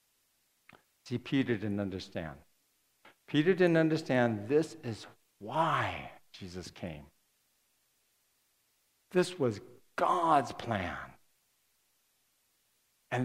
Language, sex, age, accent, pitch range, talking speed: English, male, 60-79, American, 115-180 Hz, 70 wpm